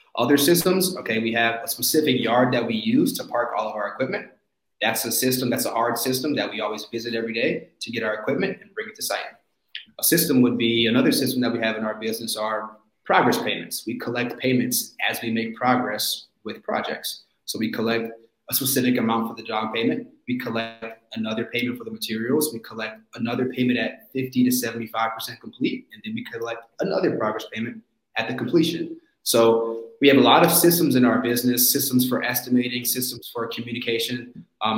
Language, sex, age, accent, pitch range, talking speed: English, male, 20-39, American, 115-130 Hz, 200 wpm